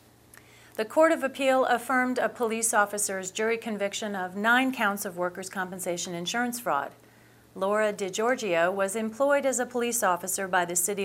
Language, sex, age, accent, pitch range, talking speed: English, female, 40-59, American, 180-230 Hz, 155 wpm